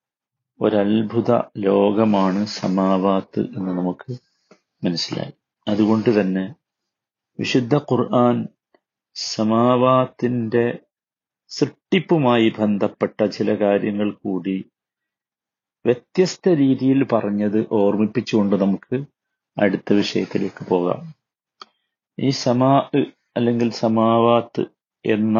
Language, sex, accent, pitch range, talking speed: Malayalam, male, native, 105-125 Hz, 65 wpm